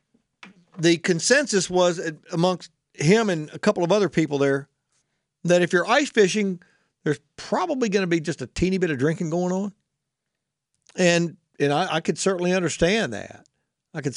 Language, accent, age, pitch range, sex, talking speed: English, American, 50-69, 145-190 Hz, male, 170 wpm